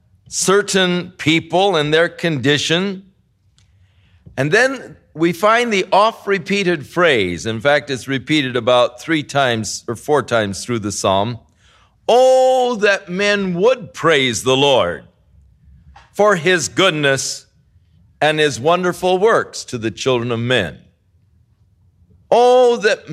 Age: 50-69